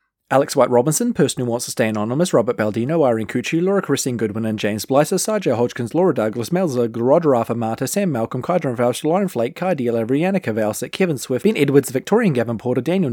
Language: English